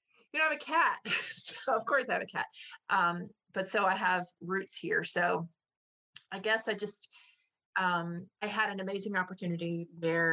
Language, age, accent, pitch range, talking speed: English, 30-49, American, 170-210 Hz, 180 wpm